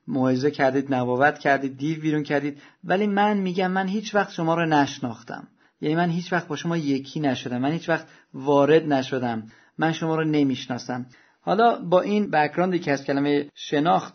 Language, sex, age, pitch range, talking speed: Persian, male, 40-59, 140-175 Hz, 175 wpm